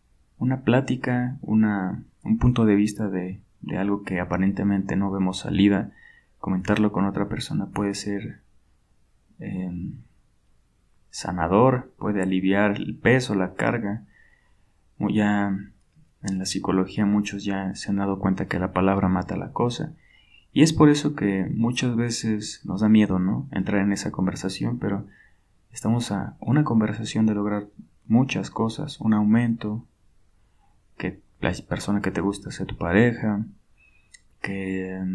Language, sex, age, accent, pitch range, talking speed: Spanish, male, 20-39, Mexican, 95-115 Hz, 135 wpm